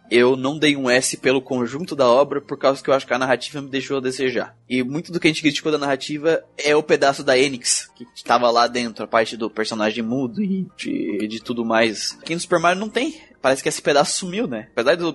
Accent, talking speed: Brazilian, 250 wpm